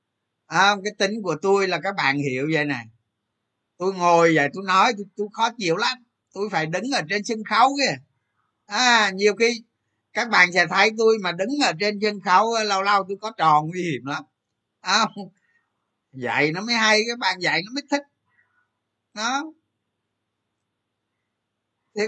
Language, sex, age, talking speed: Vietnamese, male, 20-39, 165 wpm